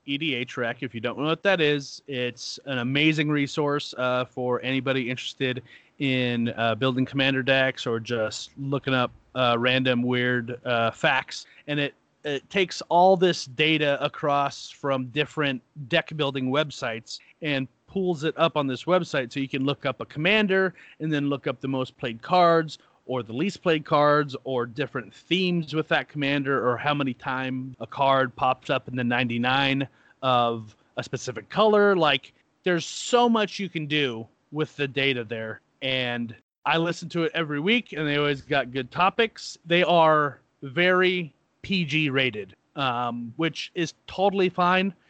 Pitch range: 130-160 Hz